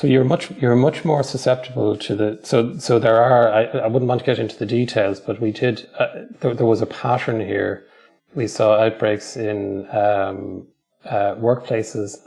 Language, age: English, 30-49